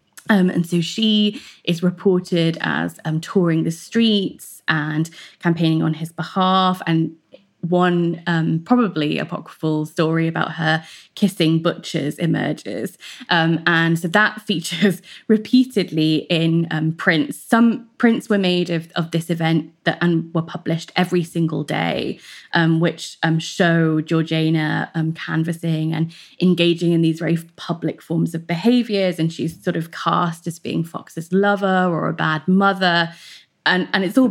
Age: 20-39